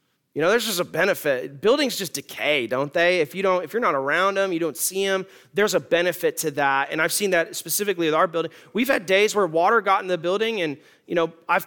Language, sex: English, male